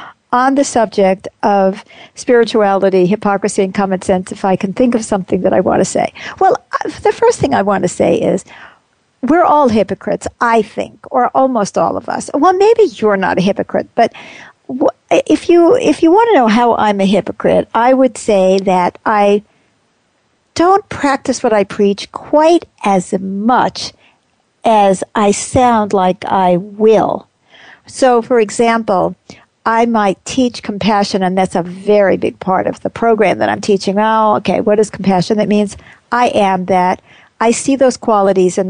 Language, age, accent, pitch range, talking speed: English, 50-69, American, 195-240 Hz, 170 wpm